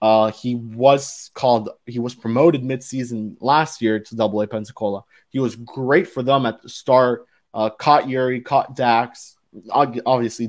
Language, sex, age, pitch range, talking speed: English, male, 20-39, 110-130 Hz, 160 wpm